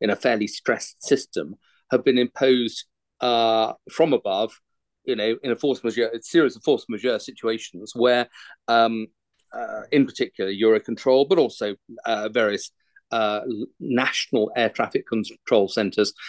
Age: 40-59